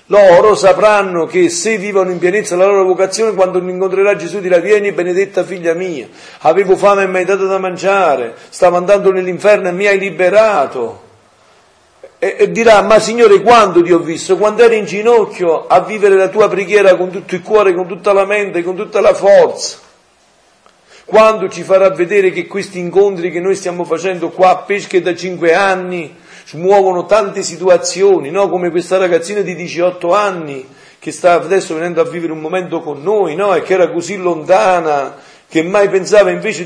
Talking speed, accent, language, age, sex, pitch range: 180 wpm, native, Italian, 50-69, male, 170-200 Hz